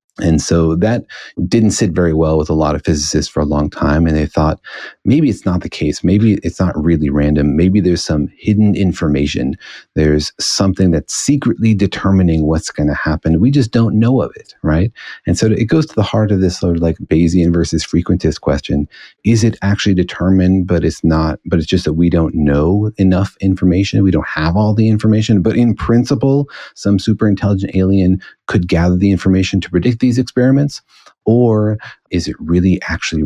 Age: 30-49